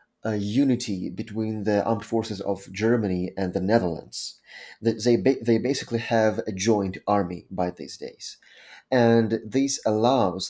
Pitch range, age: 100-115 Hz, 30-49